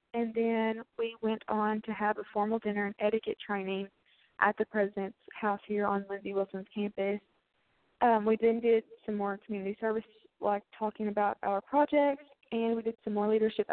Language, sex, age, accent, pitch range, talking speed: English, female, 20-39, American, 205-230 Hz, 180 wpm